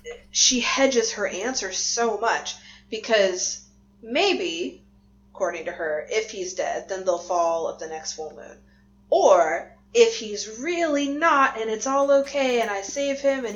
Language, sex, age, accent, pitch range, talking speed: English, female, 30-49, American, 170-245 Hz, 160 wpm